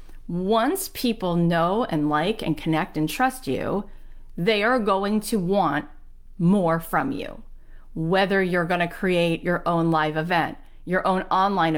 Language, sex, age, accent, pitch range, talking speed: English, female, 40-59, American, 160-200 Hz, 155 wpm